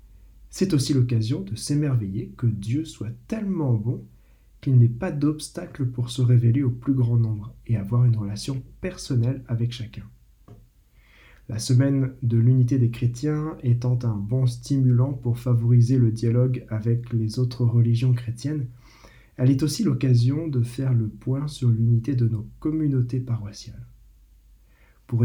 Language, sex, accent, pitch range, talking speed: French, male, French, 115-135 Hz, 145 wpm